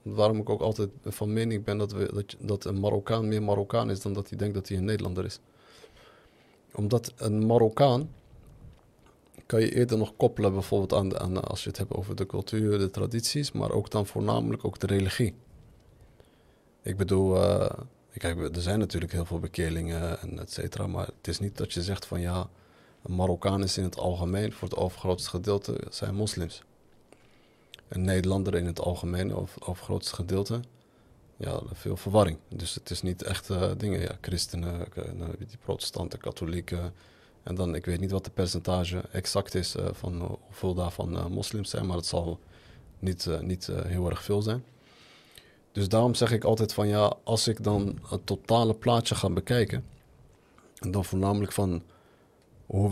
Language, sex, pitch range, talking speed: Dutch, male, 90-110 Hz, 175 wpm